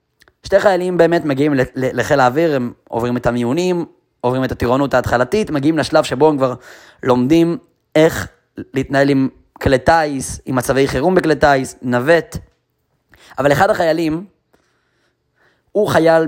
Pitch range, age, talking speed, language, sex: 130-165 Hz, 20-39, 135 wpm, Hebrew, male